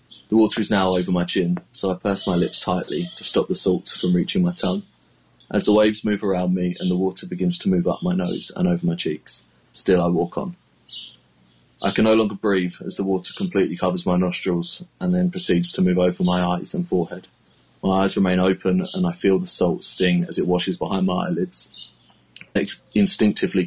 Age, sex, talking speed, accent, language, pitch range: 20-39, male, 210 wpm, British, English, 90-105 Hz